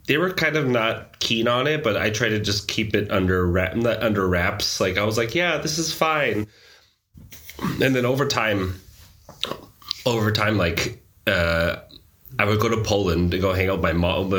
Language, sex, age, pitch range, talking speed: English, male, 30-49, 90-105 Hz, 195 wpm